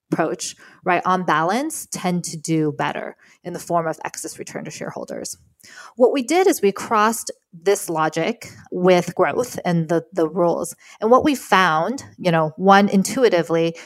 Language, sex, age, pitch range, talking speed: English, female, 20-39, 160-200 Hz, 165 wpm